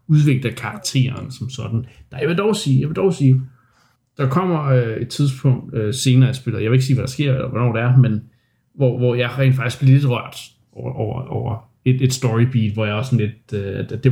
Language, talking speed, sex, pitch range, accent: Danish, 240 wpm, male, 120-135 Hz, native